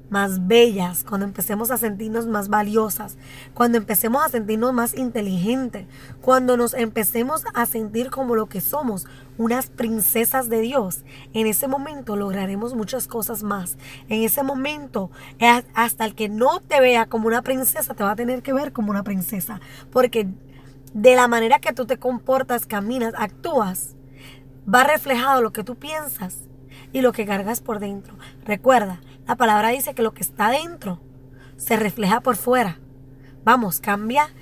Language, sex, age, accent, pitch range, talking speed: English, female, 20-39, American, 185-245 Hz, 160 wpm